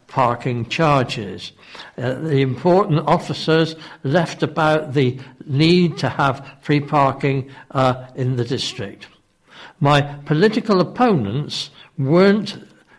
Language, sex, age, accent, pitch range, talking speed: English, male, 60-79, British, 125-165 Hz, 100 wpm